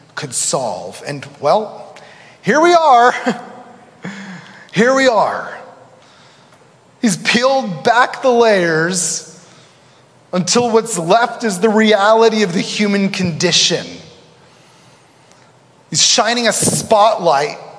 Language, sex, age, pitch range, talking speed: English, male, 30-49, 160-225 Hz, 100 wpm